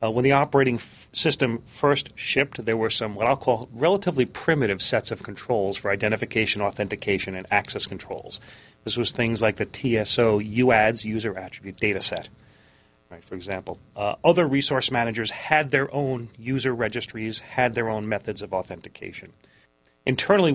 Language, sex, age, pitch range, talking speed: English, male, 40-59, 105-130 Hz, 155 wpm